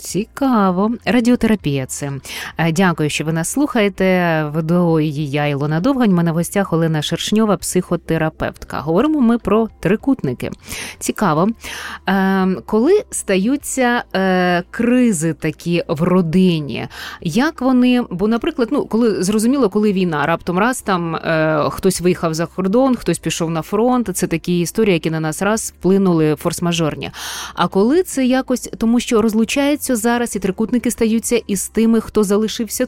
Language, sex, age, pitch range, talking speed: Ukrainian, female, 20-39, 170-235 Hz, 140 wpm